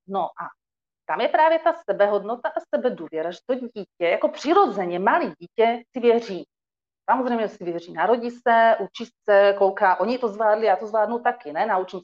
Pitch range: 200-250 Hz